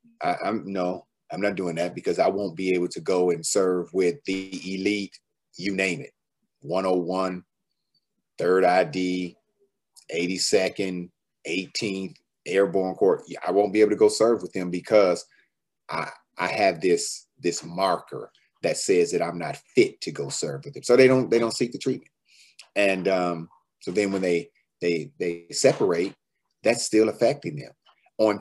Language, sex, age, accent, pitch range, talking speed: English, male, 30-49, American, 90-120 Hz, 165 wpm